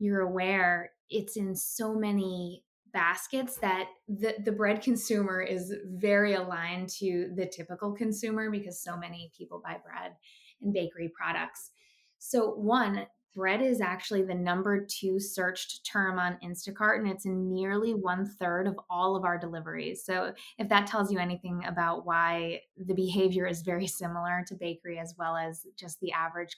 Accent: American